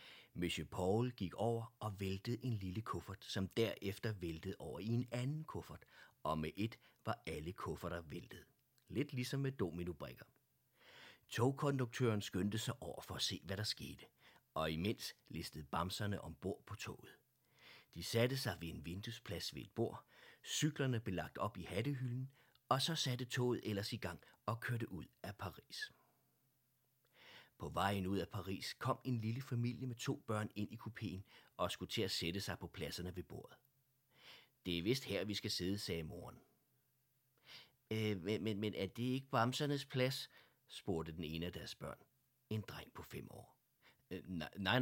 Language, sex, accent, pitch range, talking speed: Danish, male, native, 95-130 Hz, 170 wpm